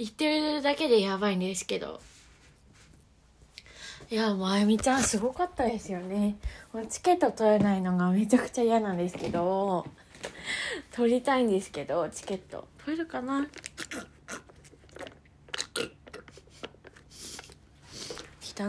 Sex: female